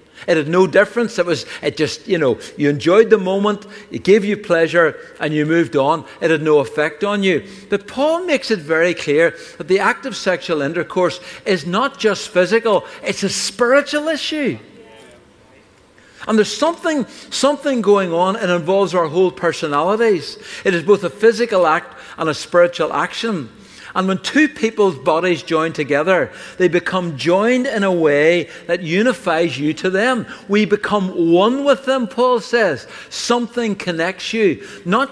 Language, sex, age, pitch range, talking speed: English, male, 60-79, 170-225 Hz, 165 wpm